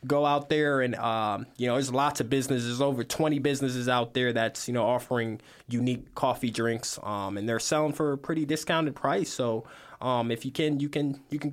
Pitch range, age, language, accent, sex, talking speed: 125-155 Hz, 20-39, English, American, male, 215 wpm